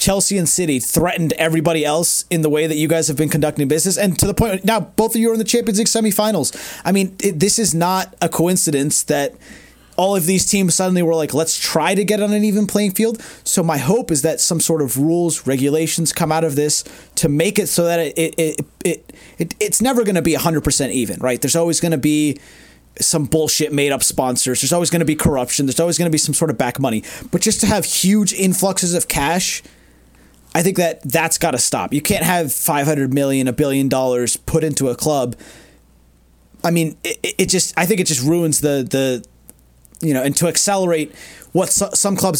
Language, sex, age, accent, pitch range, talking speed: English, male, 30-49, American, 145-185 Hz, 230 wpm